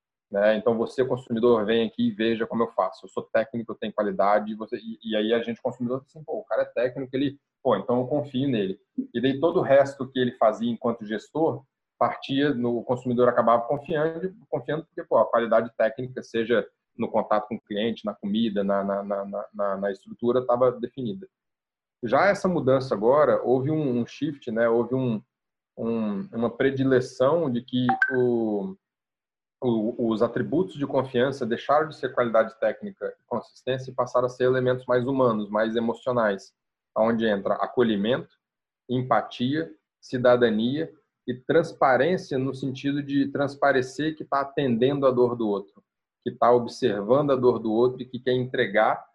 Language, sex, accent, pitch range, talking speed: Portuguese, male, Brazilian, 115-135 Hz, 170 wpm